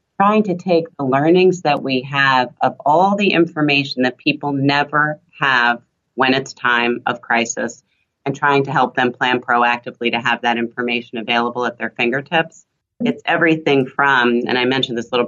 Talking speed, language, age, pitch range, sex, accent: 175 wpm, English, 40-59, 125-160 Hz, female, American